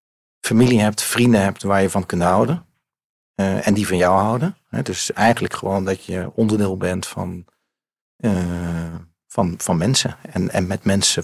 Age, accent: 40-59, Dutch